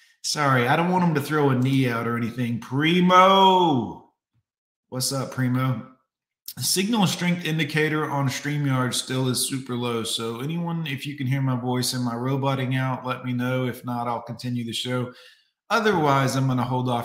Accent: American